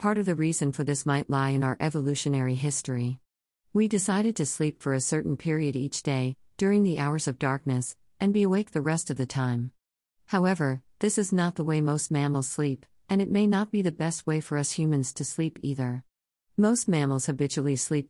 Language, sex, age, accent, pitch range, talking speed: English, female, 50-69, American, 130-160 Hz, 205 wpm